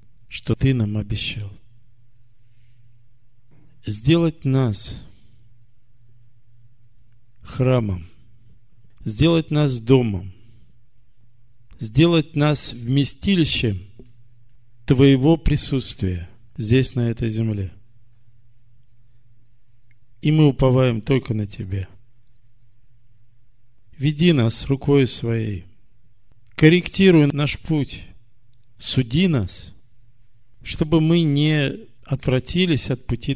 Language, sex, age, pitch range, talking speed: Russian, male, 50-69, 115-135 Hz, 70 wpm